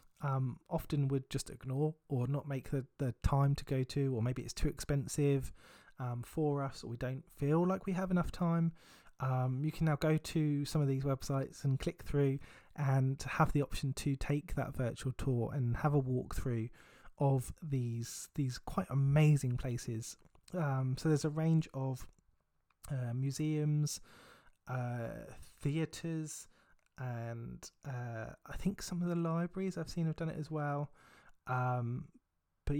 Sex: male